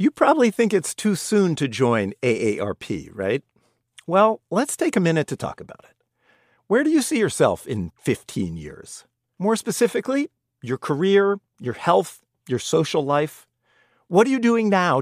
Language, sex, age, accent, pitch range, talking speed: English, male, 50-69, American, 135-195 Hz, 165 wpm